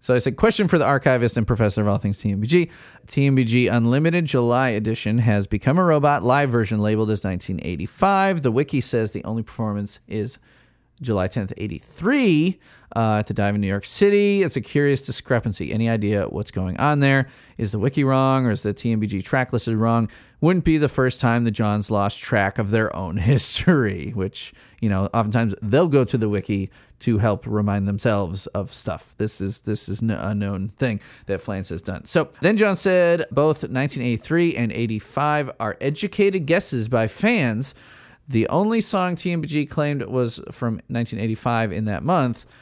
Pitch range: 105-140 Hz